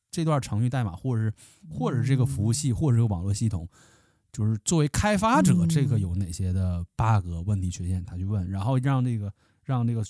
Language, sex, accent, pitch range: Chinese, male, native, 100-135 Hz